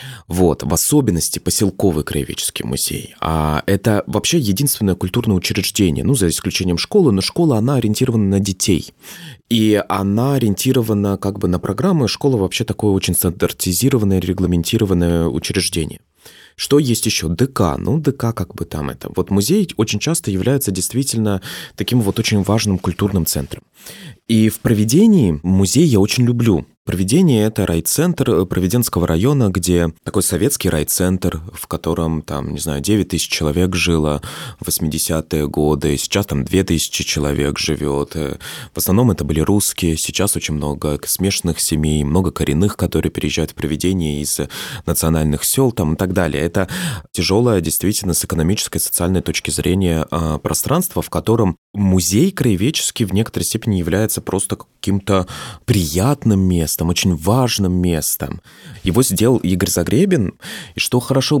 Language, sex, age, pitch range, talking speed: Russian, male, 20-39, 85-110 Hz, 140 wpm